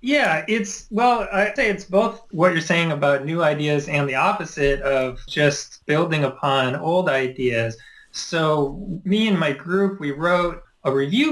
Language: English